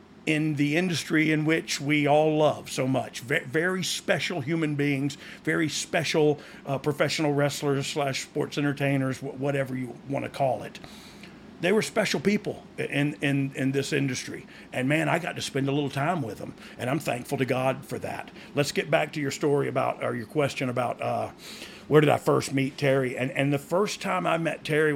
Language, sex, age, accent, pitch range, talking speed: English, male, 50-69, American, 130-155 Hz, 200 wpm